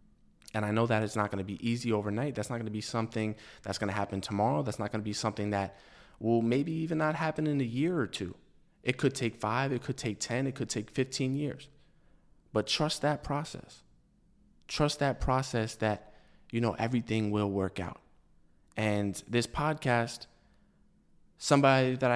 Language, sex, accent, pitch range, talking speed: English, male, American, 110-140 Hz, 190 wpm